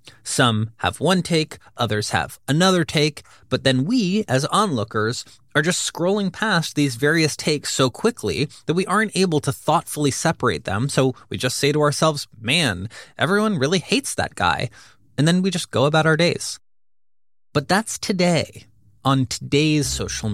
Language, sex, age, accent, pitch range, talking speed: English, male, 30-49, American, 110-160 Hz, 165 wpm